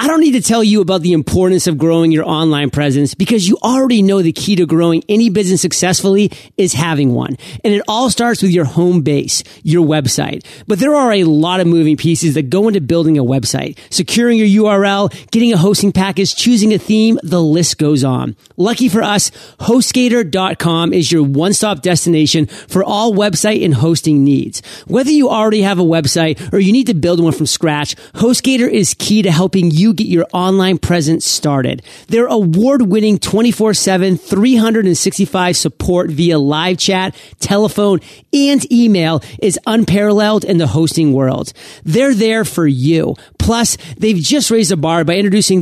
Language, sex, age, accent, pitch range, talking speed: English, male, 40-59, American, 160-215 Hz, 180 wpm